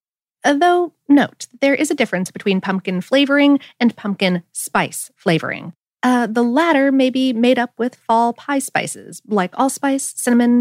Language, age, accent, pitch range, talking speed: English, 30-49, American, 185-285 Hz, 160 wpm